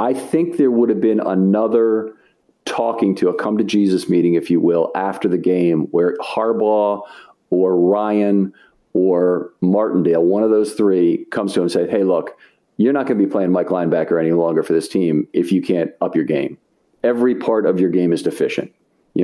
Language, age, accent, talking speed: English, 40-59, American, 200 wpm